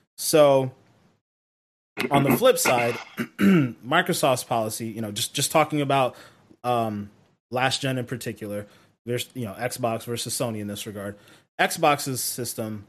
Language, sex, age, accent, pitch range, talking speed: English, male, 20-39, American, 115-145 Hz, 135 wpm